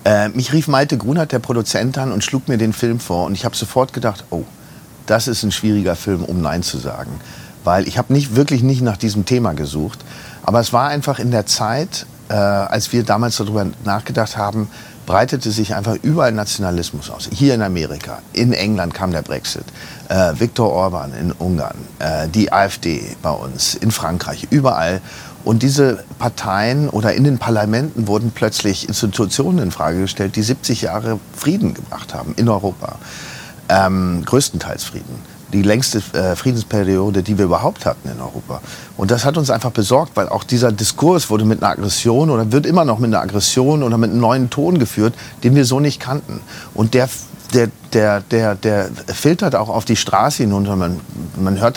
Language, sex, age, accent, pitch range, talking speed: German, male, 50-69, German, 100-125 Hz, 185 wpm